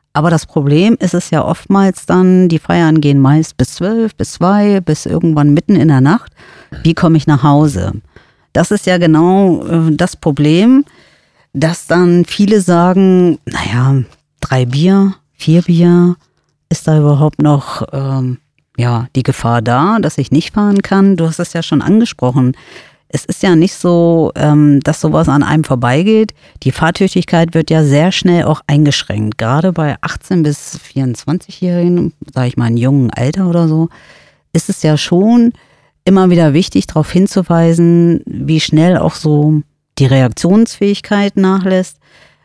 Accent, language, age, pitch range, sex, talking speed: German, German, 40-59, 145-185 Hz, female, 155 wpm